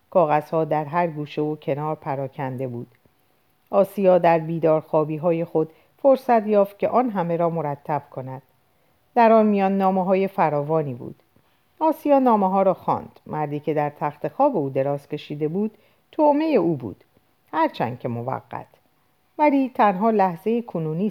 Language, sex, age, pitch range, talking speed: Persian, female, 50-69, 145-210 Hz, 145 wpm